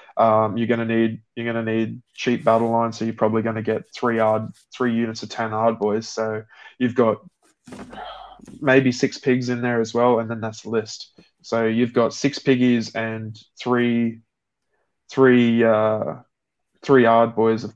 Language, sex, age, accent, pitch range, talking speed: English, male, 20-39, Australian, 110-120 Hz, 170 wpm